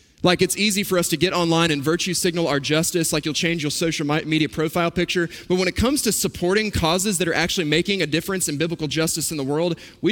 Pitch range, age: 170-210 Hz, 20-39